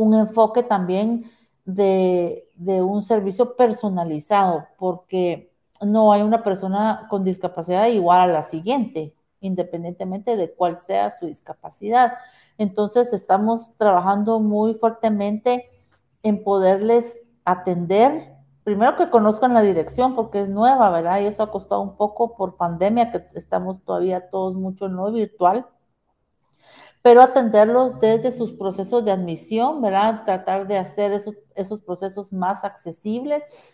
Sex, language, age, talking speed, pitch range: female, Spanish, 50-69, 130 wpm, 185-225 Hz